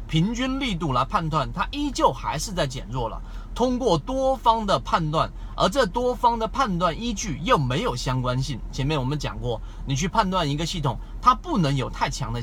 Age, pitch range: 30-49, 125-170 Hz